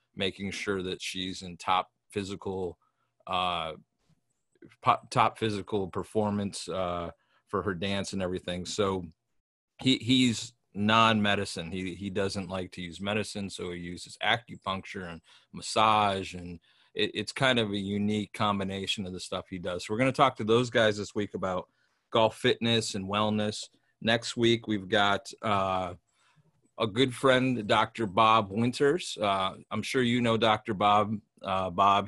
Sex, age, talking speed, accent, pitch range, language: male, 30-49, 150 wpm, American, 95-115 Hz, English